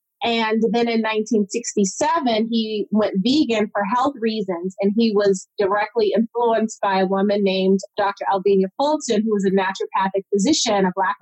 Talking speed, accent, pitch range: 155 wpm, American, 205-235 Hz